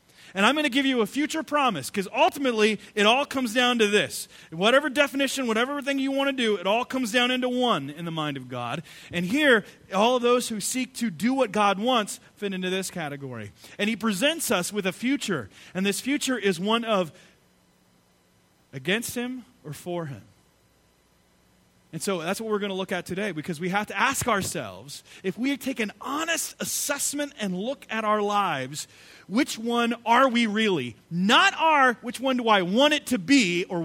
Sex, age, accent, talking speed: male, 30-49, American, 200 wpm